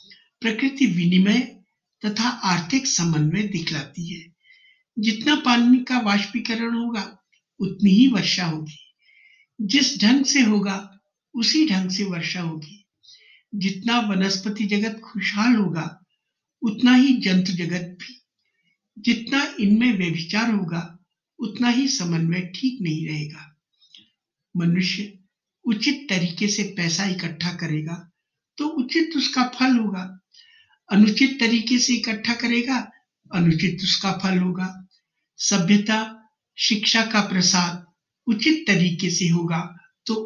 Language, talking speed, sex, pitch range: Hindi, 110 wpm, male, 180-240 Hz